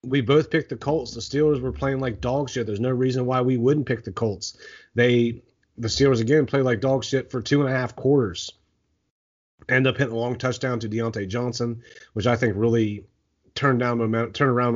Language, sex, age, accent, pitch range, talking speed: English, male, 30-49, American, 110-130 Hz, 215 wpm